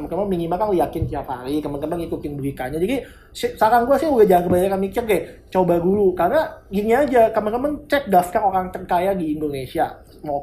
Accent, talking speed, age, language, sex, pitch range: native, 180 wpm, 20-39, Indonesian, male, 155-200 Hz